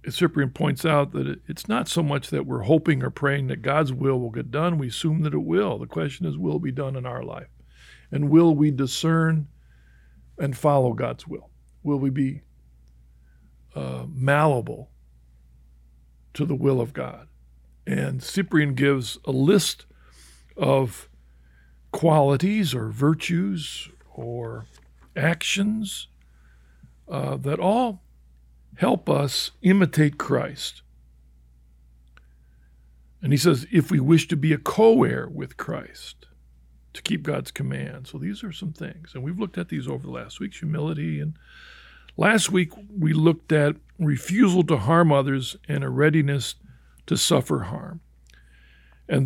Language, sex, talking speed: English, male, 145 wpm